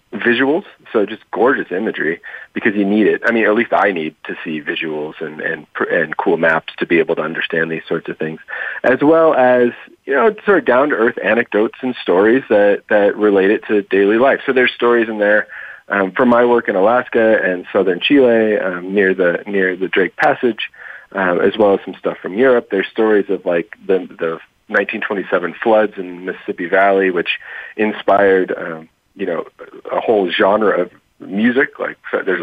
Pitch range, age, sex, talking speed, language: 95-140 Hz, 40-59, male, 190 wpm, English